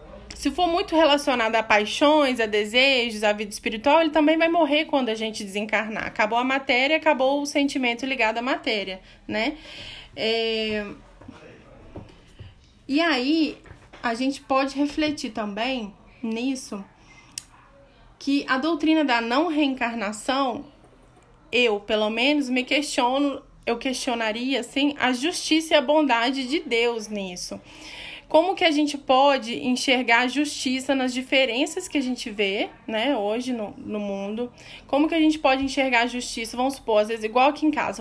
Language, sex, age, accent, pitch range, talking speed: Portuguese, female, 10-29, Brazilian, 225-290 Hz, 145 wpm